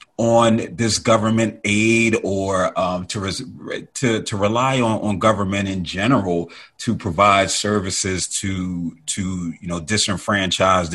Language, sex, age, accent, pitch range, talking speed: English, male, 30-49, American, 95-110 Hz, 125 wpm